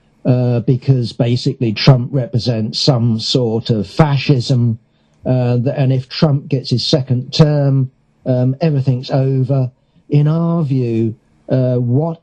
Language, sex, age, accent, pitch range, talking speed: English, male, 50-69, British, 115-140 Hz, 125 wpm